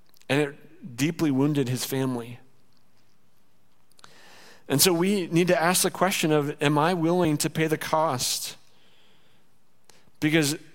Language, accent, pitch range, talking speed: English, American, 140-175 Hz, 130 wpm